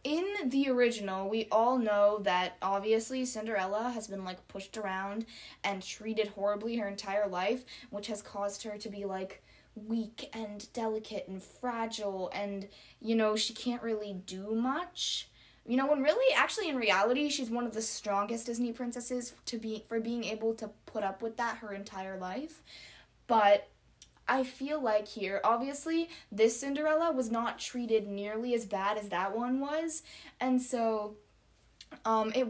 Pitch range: 210-260 Hz